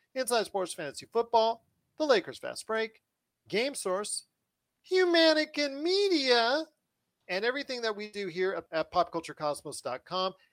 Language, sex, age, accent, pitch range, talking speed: English, male, 40-59, American, 185-270 Hz, 120 wpm